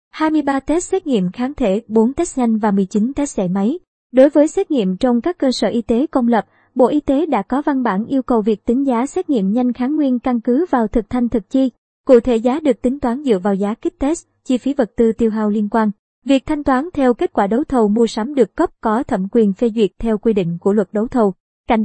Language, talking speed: Vietnamese, 260 wpm